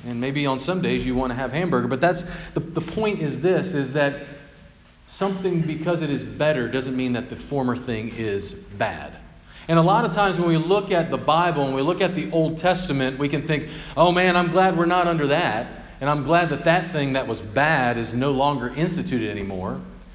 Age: 40-59